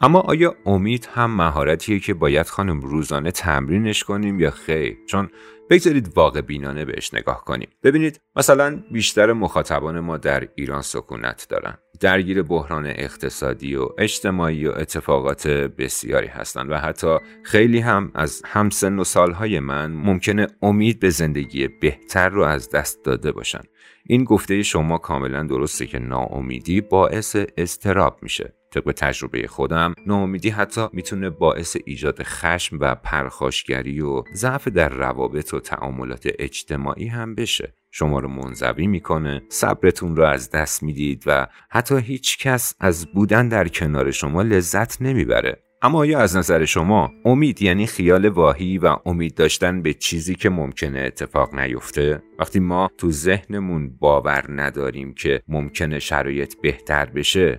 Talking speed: 145 wpm